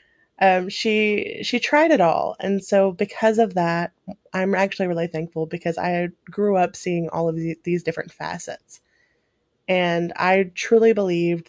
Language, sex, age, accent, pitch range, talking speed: English, female, 20-39, American, 170-210 Hz, 155 wpm